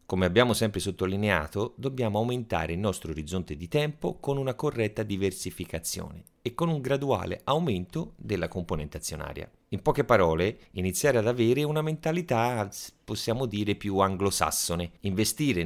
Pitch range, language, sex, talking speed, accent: 90-125 Hz, Italian, male, 140 wpm, native